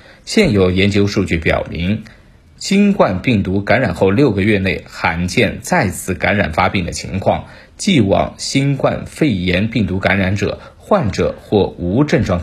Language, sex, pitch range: Chinese, male, 90-110 Hz